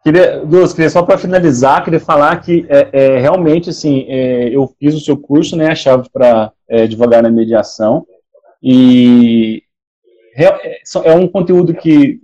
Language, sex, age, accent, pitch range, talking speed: Portuguese, male, 30-49, Brazilian, 120-160 Hz, 160 wpm